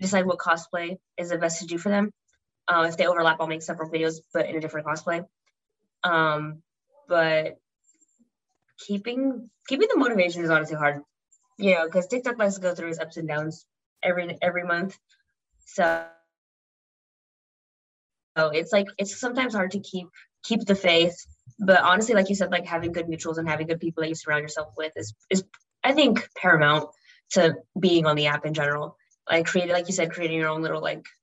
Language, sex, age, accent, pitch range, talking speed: English, female, 20-39, American, 155-190 Hz, 190 wpm